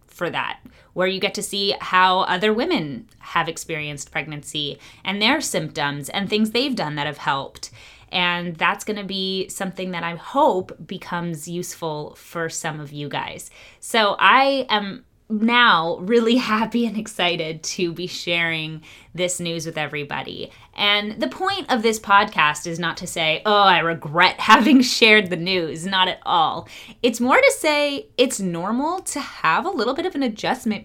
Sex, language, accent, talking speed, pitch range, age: female, English, American, 170 wpm, 165-225 Hz, 20-39